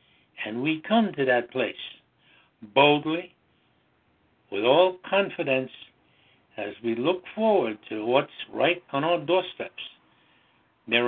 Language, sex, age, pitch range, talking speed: English, male, 60-79, 120-170 Hz, 115 wpm